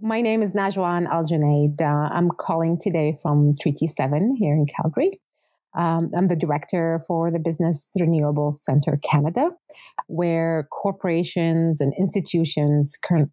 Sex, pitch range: female, 160-195 Hz